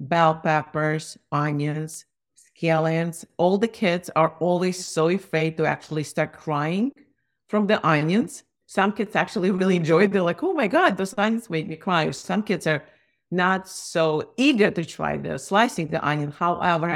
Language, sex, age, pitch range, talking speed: English, female, 50-69, 155-185 Hz, 165 wpm